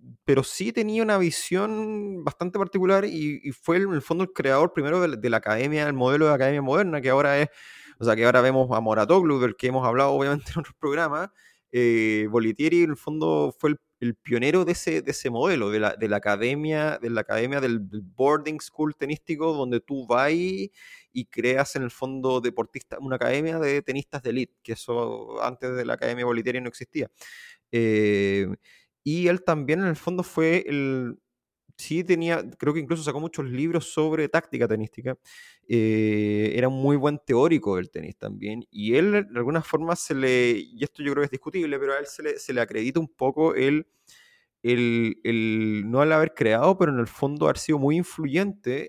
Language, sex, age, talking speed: Spanish, male, 30-49, 200 wpm